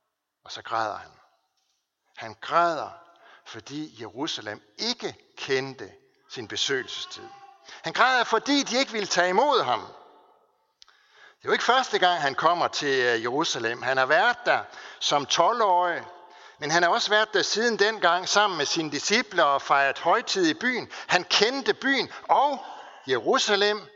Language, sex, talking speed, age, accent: Danish, male, 150 wpm, 60-79, native